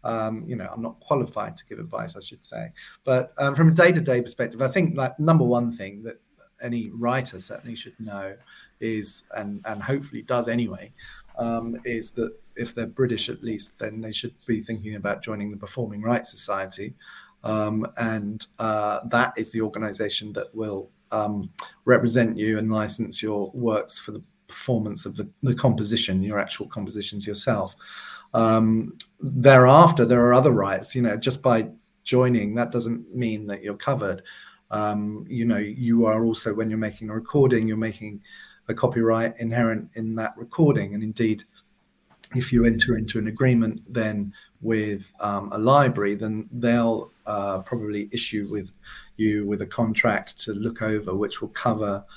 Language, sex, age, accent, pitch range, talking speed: English, male, 40-59, British, 105-120 Hz, 170 wpm